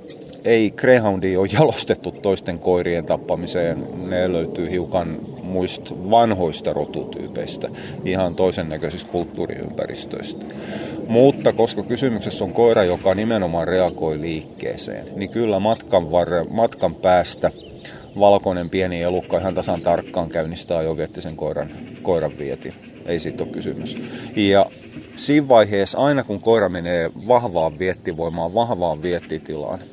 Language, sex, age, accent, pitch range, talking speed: Finnish, male, 30-49, native, 90-110 Hz, 120 wpm